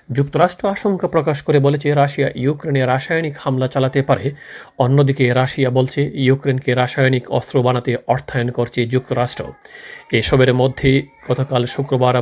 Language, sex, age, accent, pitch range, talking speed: Bengali, male, 40-59, native, 125-140 Hz, 125 wpm